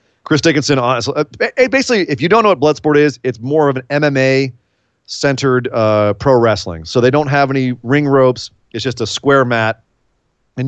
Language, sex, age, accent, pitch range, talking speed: English, male, 40-59, American, 115-140 Hz, 180 wpm